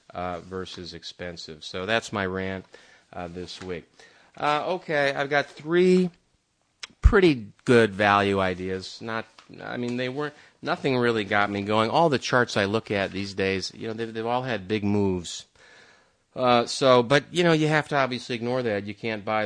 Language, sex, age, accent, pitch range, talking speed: English, male, 30-49, American, 95-120 Hz, 180 wpm